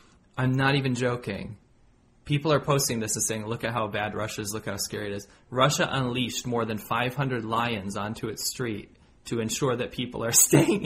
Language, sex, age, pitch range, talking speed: English, male, 30-49, 105-125 Hz, 200 wpm